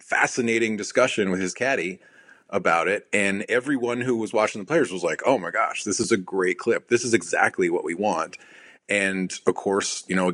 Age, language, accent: 30-49, English, American